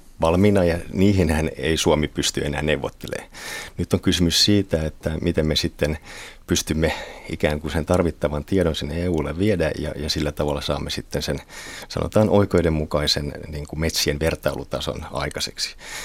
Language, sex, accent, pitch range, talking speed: Finnish, male, native, 75-95 Hz, 145 wpm